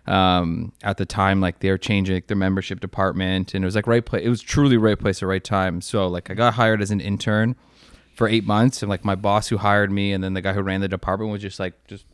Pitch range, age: 95-110 Hz, 20-39